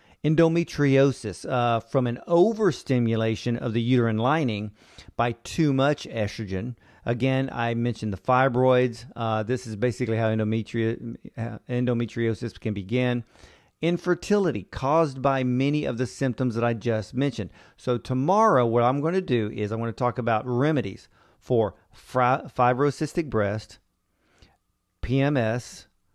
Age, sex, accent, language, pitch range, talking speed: 40-59, male, American, English, 110-135 Hz, 125 wpm